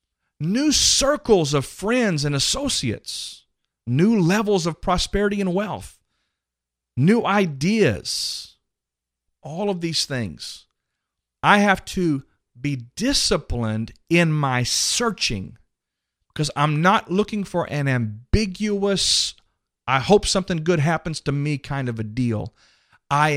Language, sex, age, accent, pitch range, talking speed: English, male, 40-59, American, 115-180 Hz, 115 wpm